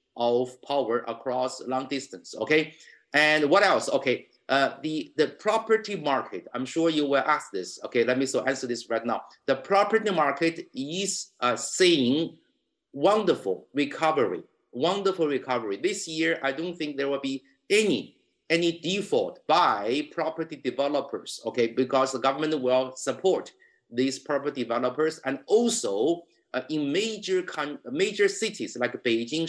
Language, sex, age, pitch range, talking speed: English, male, 50-69, 135-180 Hz, 145 wpm